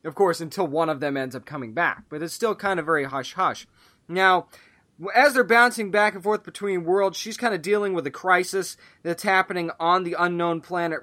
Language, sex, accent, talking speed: English, male, American, 210 wpm